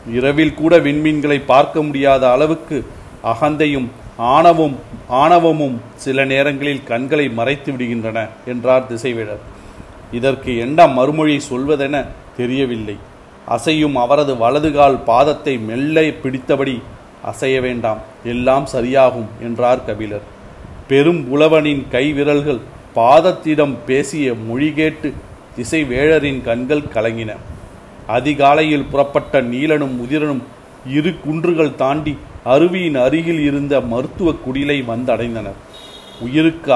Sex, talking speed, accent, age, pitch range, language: male, 90 wpm, native, 40-59, 120-150 Hz, Tamil